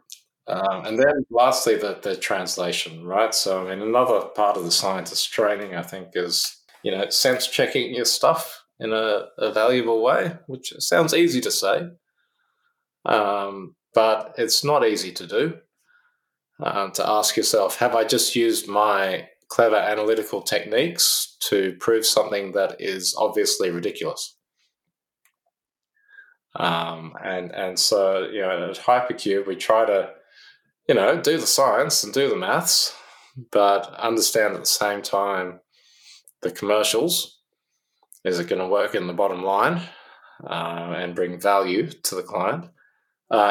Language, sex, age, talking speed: English, male, 20-39, 145 wpm